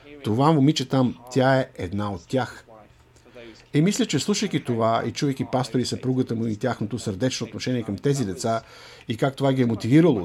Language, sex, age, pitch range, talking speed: Bulgarian, male, 50-69, 120-155 Hz, 180 wpm